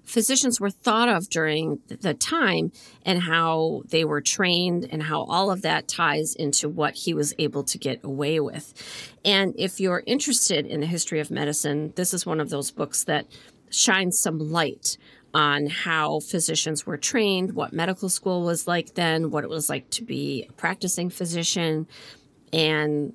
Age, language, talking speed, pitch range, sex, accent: 40-59, English, 175 wpm, 150-185 Hz, female, American